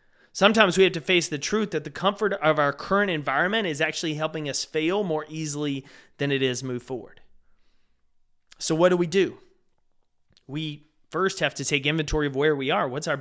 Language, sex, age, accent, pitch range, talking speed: English, male, 30-49, American, 140-180 Hz, 195 wpm